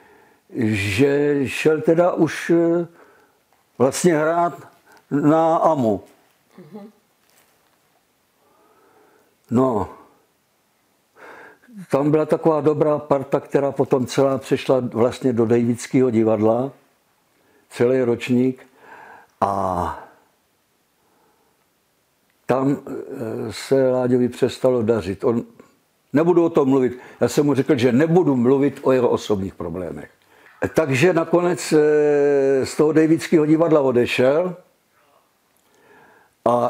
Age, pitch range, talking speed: 60-79, 125-155 Hz, 90 wpm